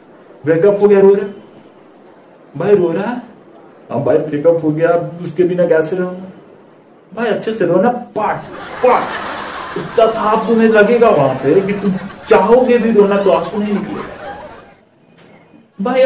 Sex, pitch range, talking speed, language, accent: male, 175-225 Hz, 50 wpm, Hindi, native